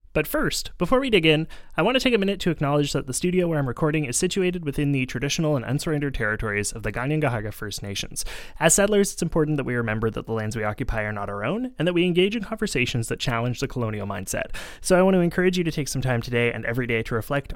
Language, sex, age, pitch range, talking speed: English, male, 20-39, 115-150 Hz, 260 wpm